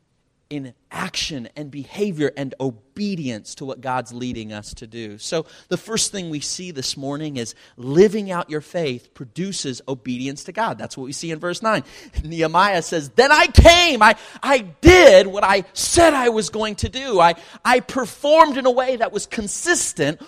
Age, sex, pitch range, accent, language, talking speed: 30-49, male, 125-210 Hz, American, English, 185 wpm